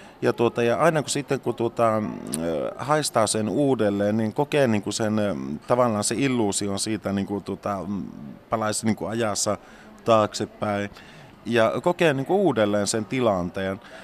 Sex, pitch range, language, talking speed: male, 105-120 Hz, Finnish, 135 wpm